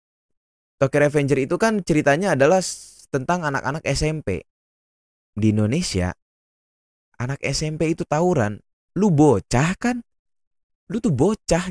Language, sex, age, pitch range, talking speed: Indonesian, male, 20-39, 100-165 Hz, 110 wpm